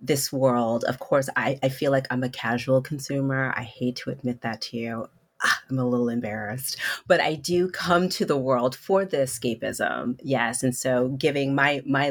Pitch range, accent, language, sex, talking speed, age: 130-165 Hz, American, English, female, 200 wpm, 30-49